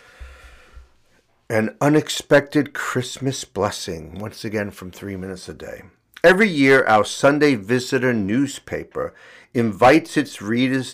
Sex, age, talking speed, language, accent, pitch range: male, 50-69, 110 wpm, English, American, 105-140 Hz